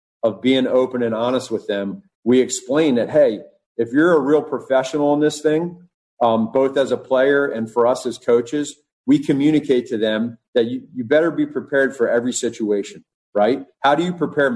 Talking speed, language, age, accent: 195 wpm, English, 40-59, American